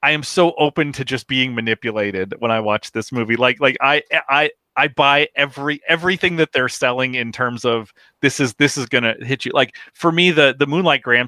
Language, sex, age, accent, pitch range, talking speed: English, male, 30-49, American, 115-145 Hz, 225 wpm